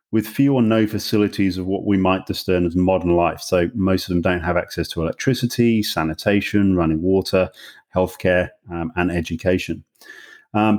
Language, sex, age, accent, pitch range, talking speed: English, male, 30-49, British, 90-110 Hz, 165 wpm